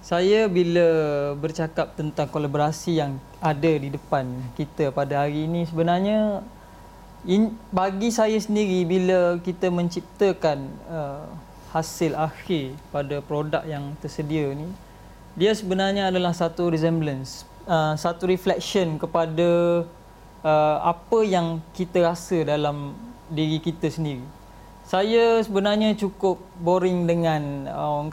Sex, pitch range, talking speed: male, 155-195 Hz, 115 wpm